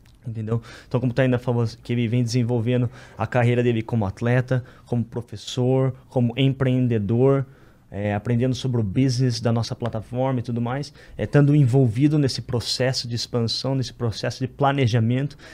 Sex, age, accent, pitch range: male, 20-39, Brazilian, 120-140 Hz